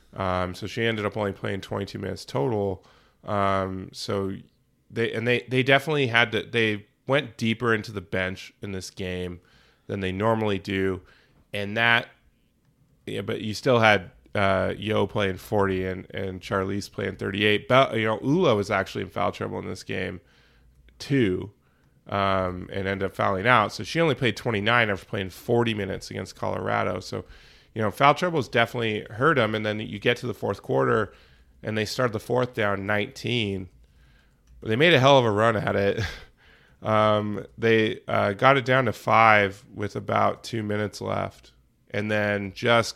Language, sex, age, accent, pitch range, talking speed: English, male, 30-49, American, 95-115 Hz, 175 wpm